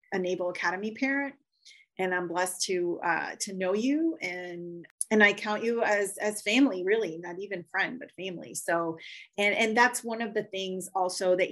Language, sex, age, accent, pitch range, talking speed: English, female, 30-49, American, 185-215 Hz, 190 wpm